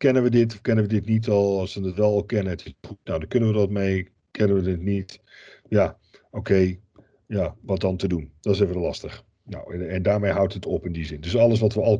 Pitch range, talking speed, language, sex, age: 95-115 Hz, 275 wpm, Dutch, male, 50-69